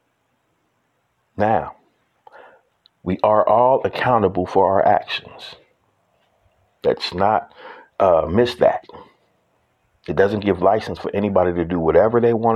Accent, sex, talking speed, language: American, male, 115 wpm, English